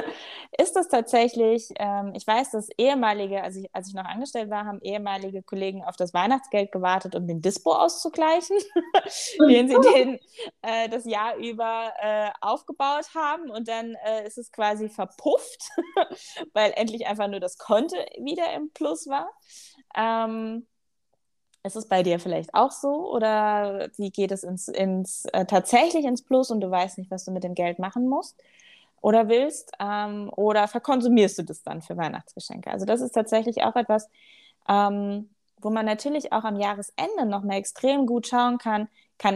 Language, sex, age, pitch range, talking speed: German, female, 20-39, 195-255 Hz, 165 wpm